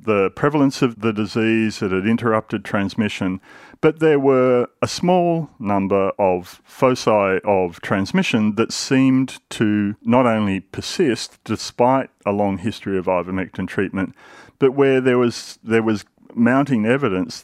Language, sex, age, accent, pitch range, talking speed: English, male, 40-59, Australian, 100-130 Hz, 140 wpm